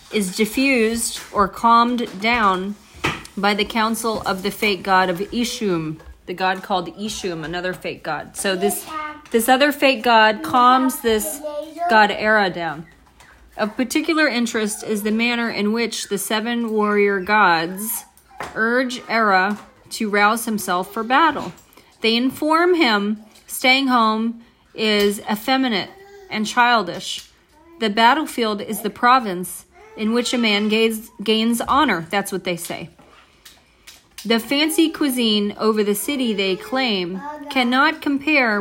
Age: 30-49